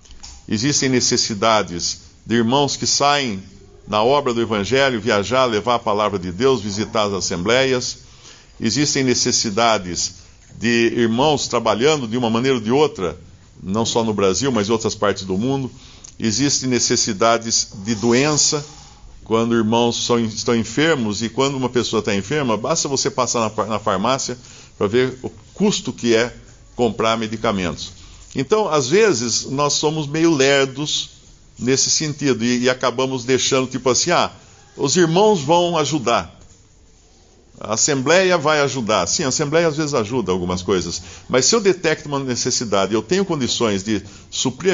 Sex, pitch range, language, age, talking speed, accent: male, 105-135 Hz, Portuguese, 60-79, 150 wpm, Brazilian